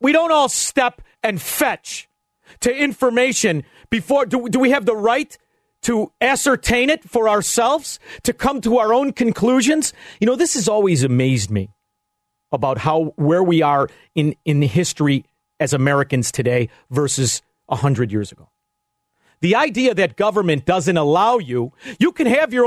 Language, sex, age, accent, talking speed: English, male, 40-59, American, 160 wpm